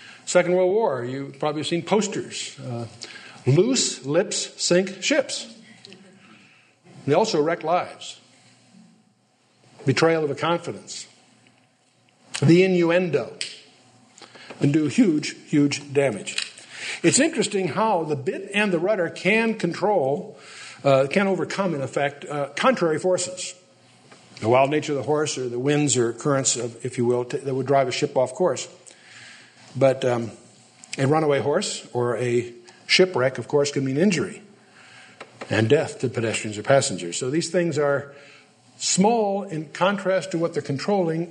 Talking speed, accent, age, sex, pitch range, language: 140 wpm, American, 60-79, male, 135-185 Hz, English